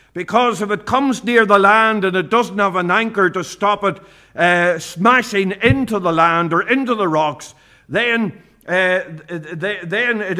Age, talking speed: 50-69, 180 wpm